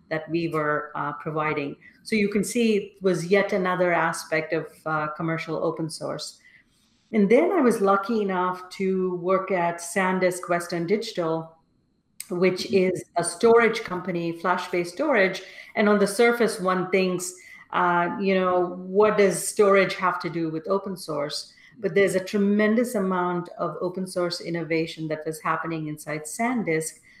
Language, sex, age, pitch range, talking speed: English, female, 40-59, 165-195 Hz, 155 wpm